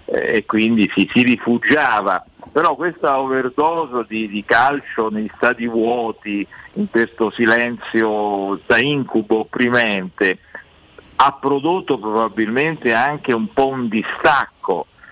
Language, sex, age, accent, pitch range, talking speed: Italian, male, 50-69, native, 115-175 Hz, 110 wpm